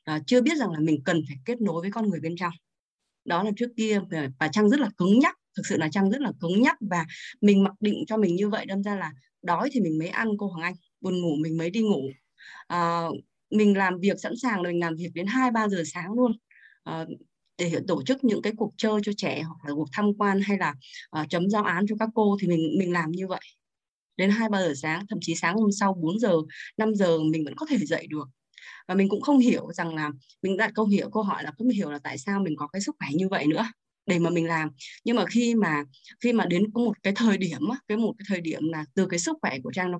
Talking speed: 265 wpm